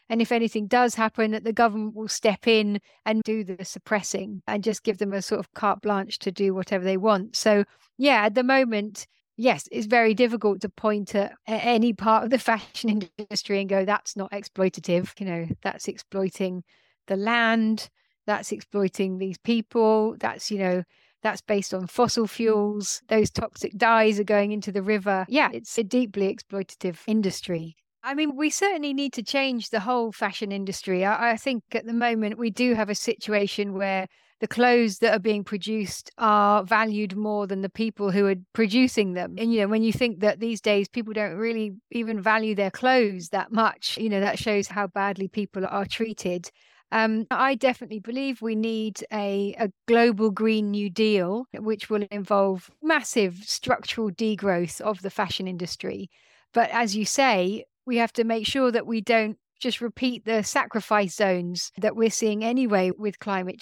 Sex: female